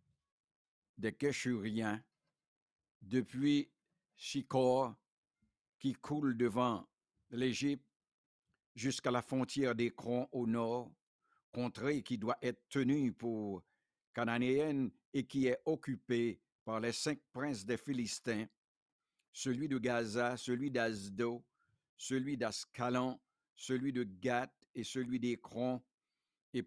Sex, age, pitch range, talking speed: male, 60-79, 120-130 Hz, 105 wpm